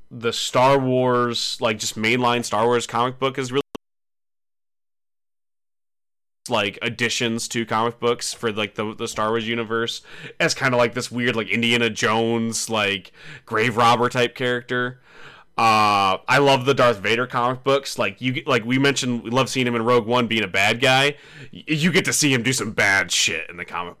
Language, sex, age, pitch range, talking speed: English, male, 20-39, 115-155 Hz, 185 wpm